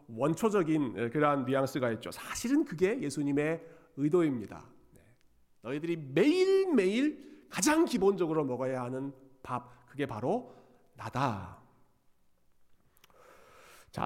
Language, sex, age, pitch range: Korean, male, 40-59, 125-180 Hz